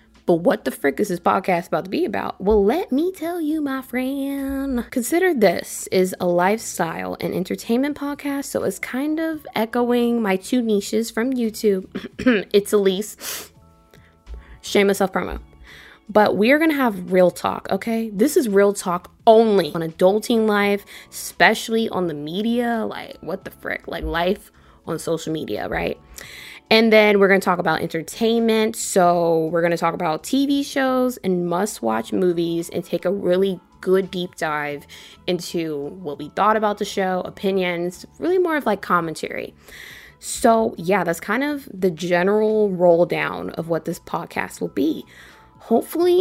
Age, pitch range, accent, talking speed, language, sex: 20-39, 175-235 Hz, American, 160 wpm, English, female